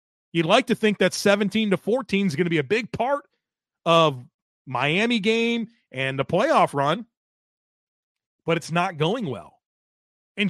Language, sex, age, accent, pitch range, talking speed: English, male, 30-49, American, 165-220 Hz, 160 wpm